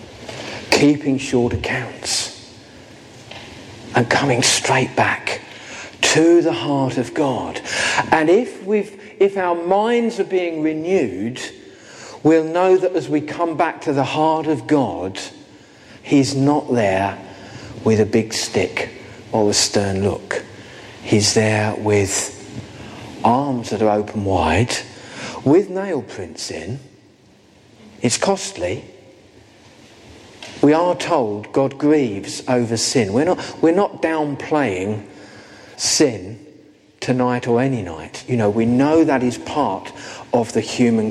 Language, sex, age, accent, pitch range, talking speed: English, male, 50-69, British, 105-150 Hz, 125 wpm